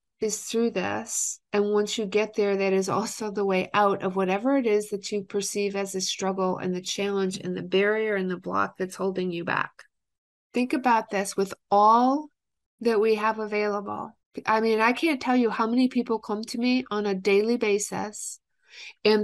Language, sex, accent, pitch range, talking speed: English, female, American, 195-220 Hz, 195 wpm